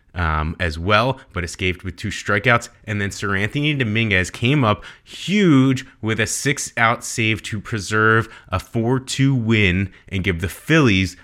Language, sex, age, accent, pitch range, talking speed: English, male, 20-39, American, 95-110 Hz, 160 wpm